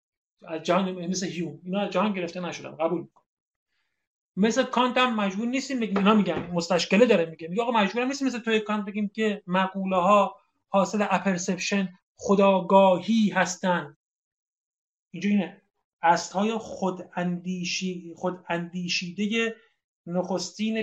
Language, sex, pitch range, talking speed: Persian, male, 170-205 Hz, 115 wpm